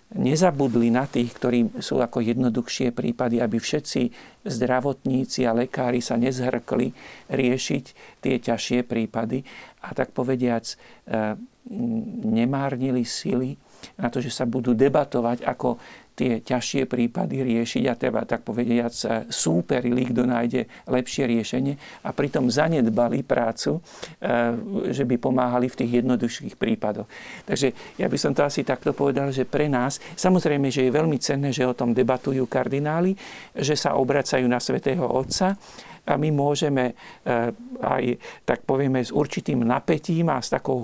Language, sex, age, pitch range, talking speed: Slovak, male, 50-69, 125-145 Hz, 140 wpm